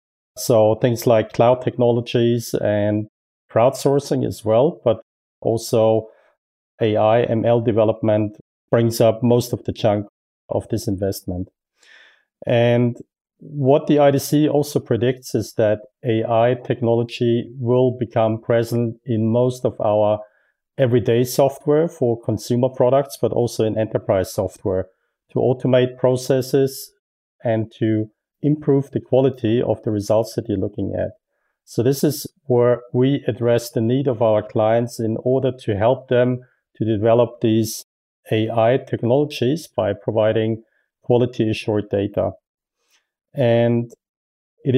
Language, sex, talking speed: English, male, 125 wpm